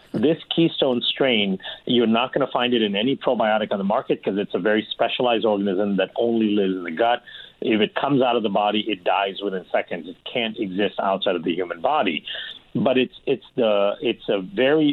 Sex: male